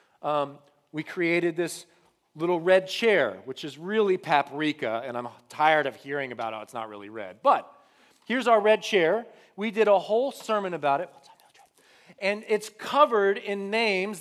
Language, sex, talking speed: English, male, 165 wpm